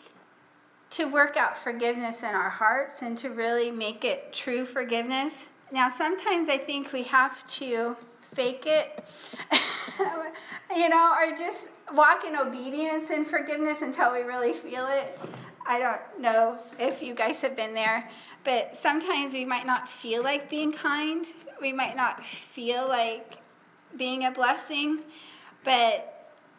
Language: English